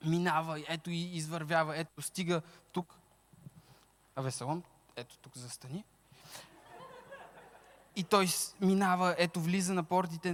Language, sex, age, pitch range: Bulgarian, male, 20-39, 145-195 Hz